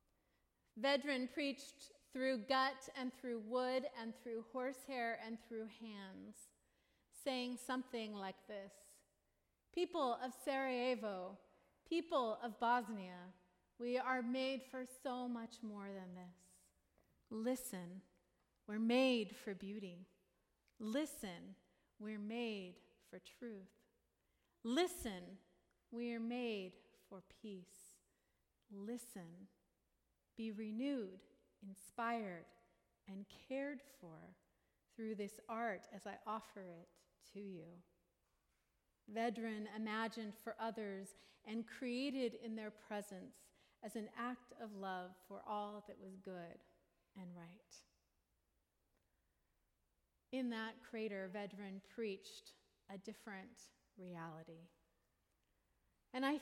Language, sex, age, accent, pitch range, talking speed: English, female, 40-59, American, 195-245 Hz, 100 wpm